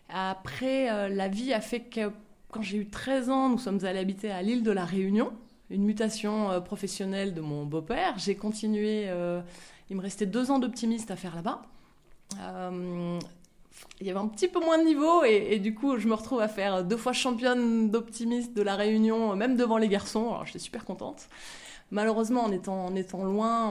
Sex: female